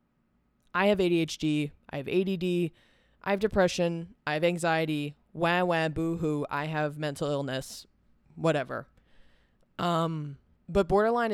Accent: American